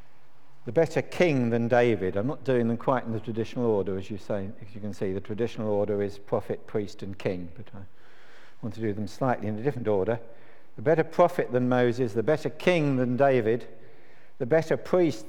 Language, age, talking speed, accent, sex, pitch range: English, 50-69, 210 wpm, British, male, 100-120 Hz